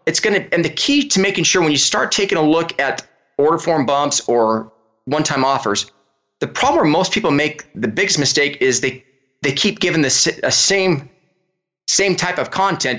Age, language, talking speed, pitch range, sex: 20-39, English, 200 wpm, 130-190 Hz, male